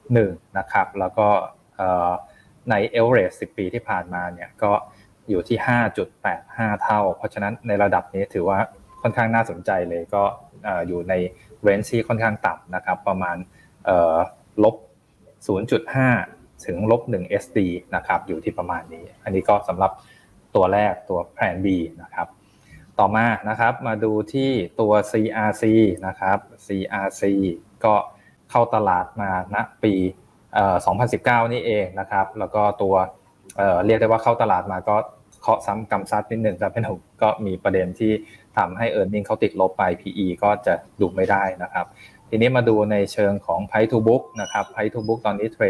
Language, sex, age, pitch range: Thai, male, 20-39, 95-110 Hz